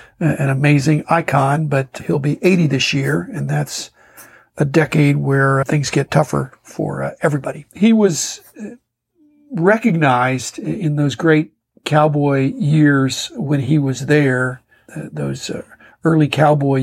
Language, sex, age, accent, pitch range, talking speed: English, male, 50-69, American, 135-160 Hz, 130 wpm